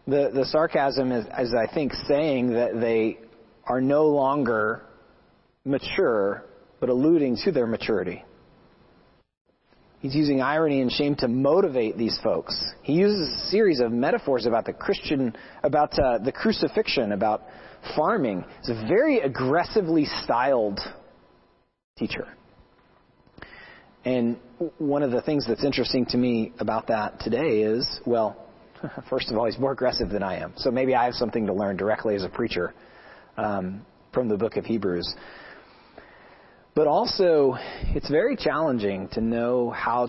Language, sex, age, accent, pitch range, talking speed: English, male, 40-59, American, 115-140 Hz, 145 wpm